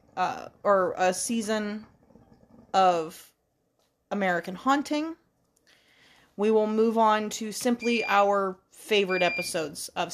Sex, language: female, English